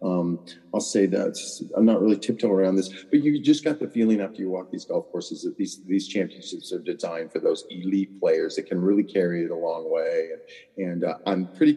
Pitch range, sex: 95-115 Hz, male